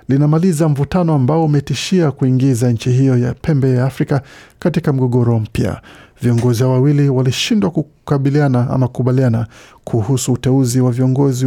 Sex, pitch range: male, 120-145 Hz